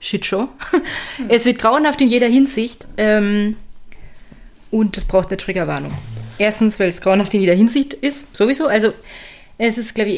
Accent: German